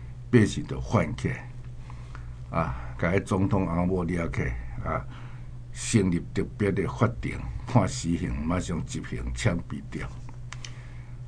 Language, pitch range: Chinese, 100-125 Hz